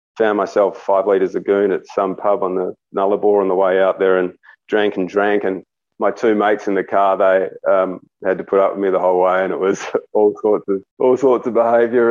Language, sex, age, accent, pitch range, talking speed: English, male, 30-49, Australian, 95-115 Hz, 235 wpm